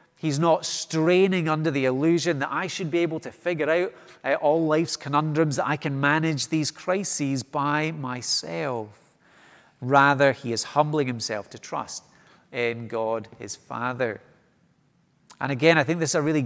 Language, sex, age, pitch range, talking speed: English, male, 30-49, 125-165 Hz, 165 wpm